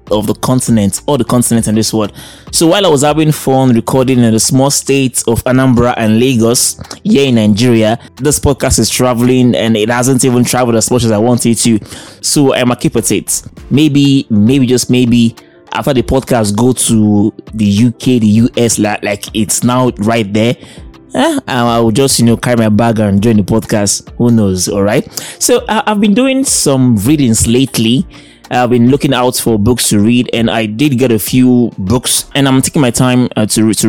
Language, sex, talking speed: English, male, 205 wpm